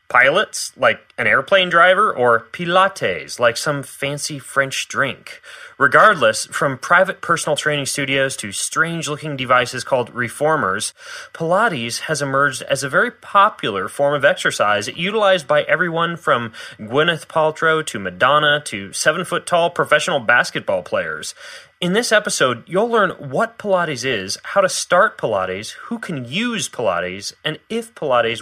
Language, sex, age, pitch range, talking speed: English, male, 30-49, 125-185 Hz, 135 wpm